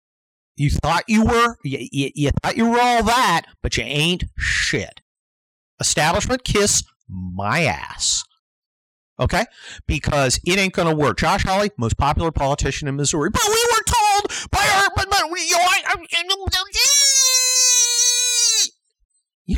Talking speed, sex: 130 wpm, male